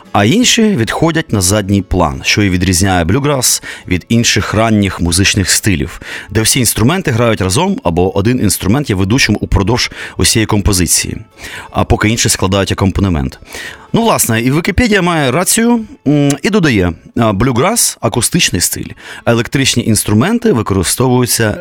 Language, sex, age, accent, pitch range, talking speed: Ukrainian, male, 30-49, native, 95-140 Hz, 135 wpm